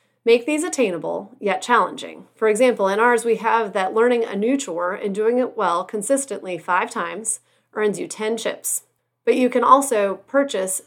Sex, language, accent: female, English, American